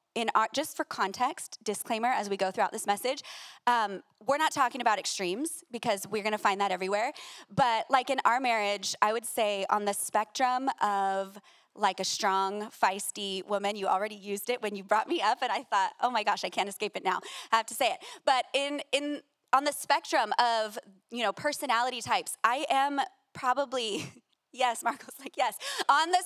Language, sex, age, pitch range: English, female, 20-39, 210-290 Hz